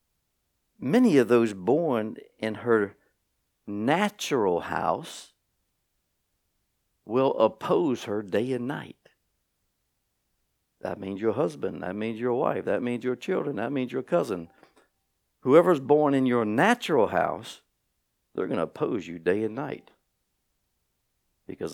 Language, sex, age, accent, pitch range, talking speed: English, male, 60-79, American, 95-130 Hz, 125 wpm